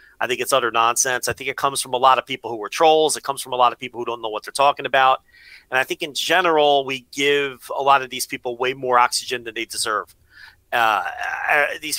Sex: male